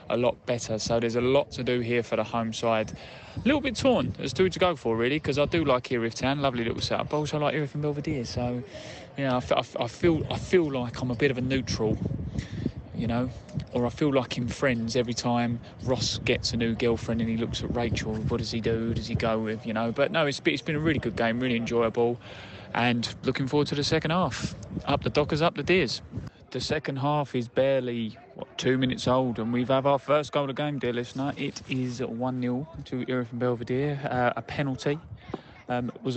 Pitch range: 115-135 Hz